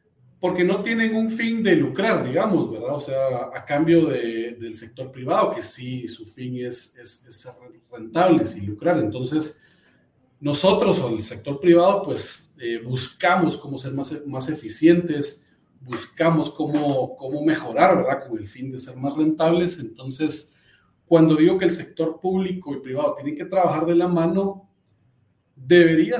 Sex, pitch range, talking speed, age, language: male, 125-165 Hz, 165 wpm, 40-59, Spanish